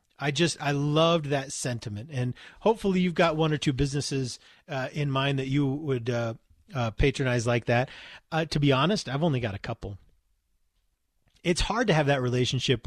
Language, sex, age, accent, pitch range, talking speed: English, male, 30-49, American, 110-145 Hz, 185 wpm